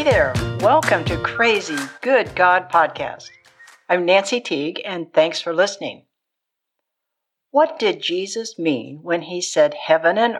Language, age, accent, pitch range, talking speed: English, 60-79, American, 165-245 Hz, 140 wpm